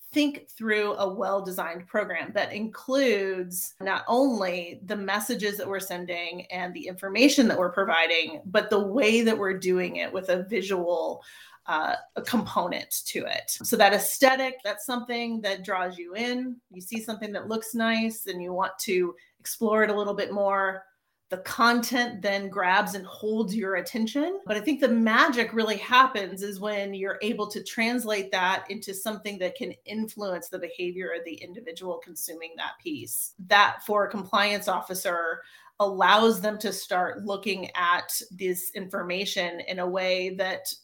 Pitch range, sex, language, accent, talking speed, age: 185-225 Hz, female, English, American, 165 wpm, 30-49